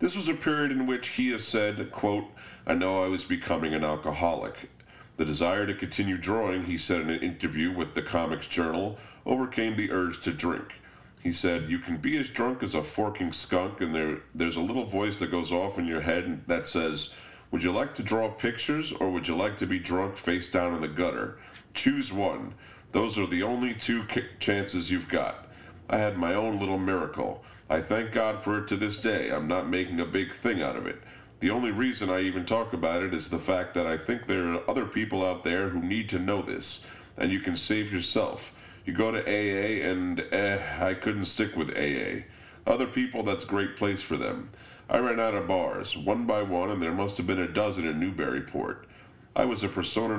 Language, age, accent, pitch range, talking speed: English, 40-59, American, 90-115 Hz, 215 wpm